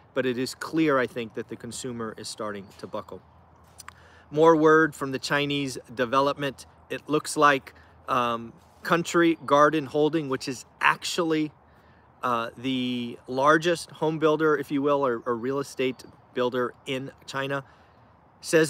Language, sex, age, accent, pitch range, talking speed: English, male, 30-49, American, 120-160 Hz, 145 wpm